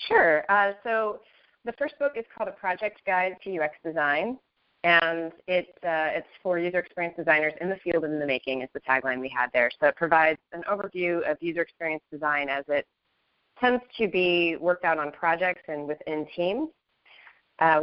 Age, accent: 30-49, American